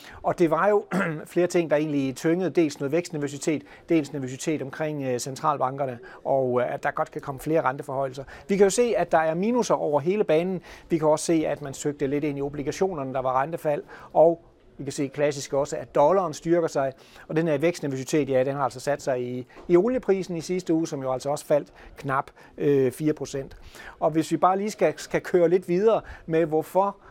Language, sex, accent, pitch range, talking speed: Danish, male, native, 140-165 Hz, 210 wpm